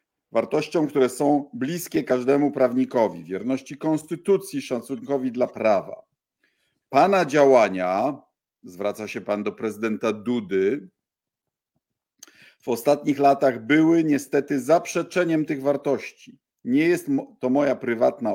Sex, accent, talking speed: male, native, 105 wpm